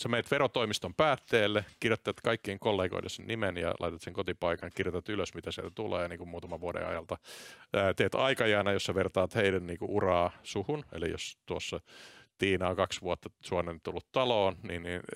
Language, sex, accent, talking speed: Finnish, male, native, 175 wpm